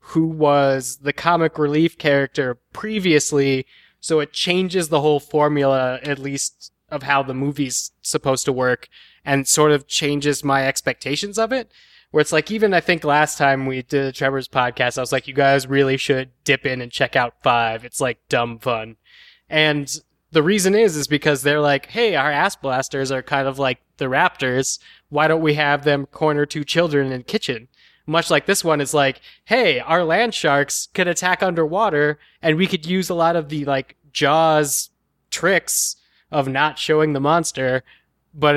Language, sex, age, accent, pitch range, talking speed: English, male, 20-39, American, 135-155 Hz, 180 wpm